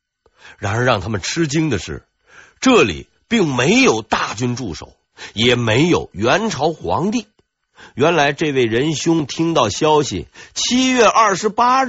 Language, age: Chinese, 50-69